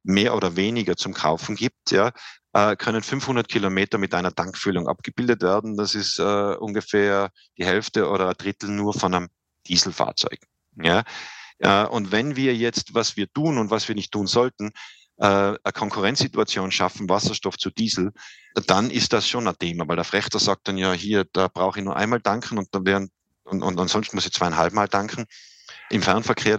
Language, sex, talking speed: English, male, 185 wpm